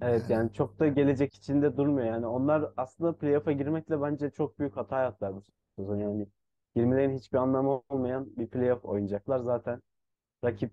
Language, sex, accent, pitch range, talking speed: Turkish, male, native, 105-130 Hz, 150 wpm